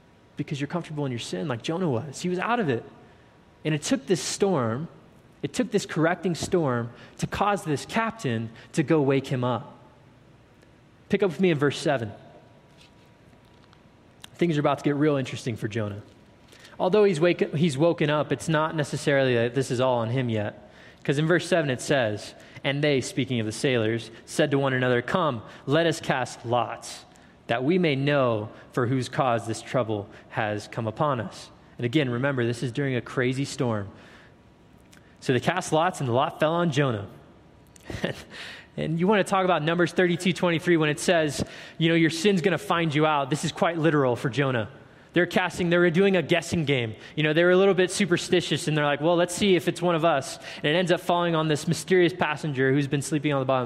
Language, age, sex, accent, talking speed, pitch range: English, 20-39, male, American, 205 wpm, 125-175 Hz